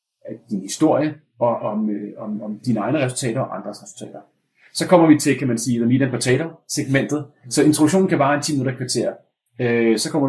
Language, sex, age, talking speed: Danish, male, 30-49, 205 wpm